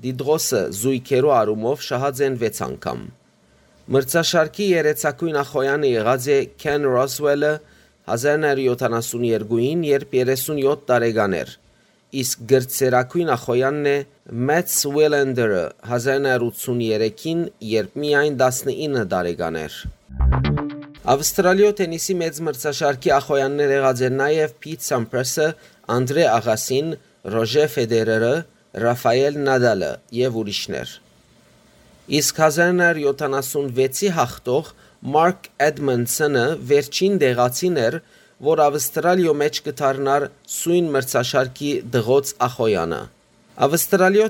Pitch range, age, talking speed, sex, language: 125-155 Hz, 30-49, 70 wpm, male, English